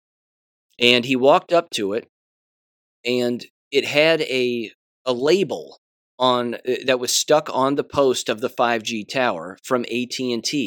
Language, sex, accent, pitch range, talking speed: English, male, American, 110-130 Hz, 145 wpm